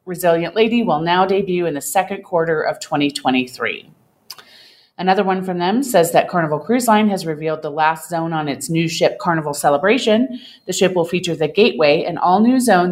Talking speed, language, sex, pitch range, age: 185 wpm, English, female, 155-195 Hz, 30-49